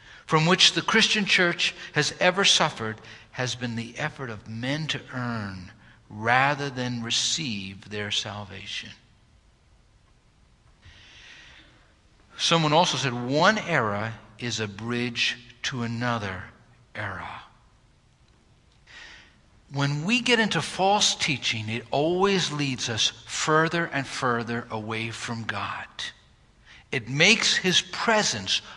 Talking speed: 110 wpm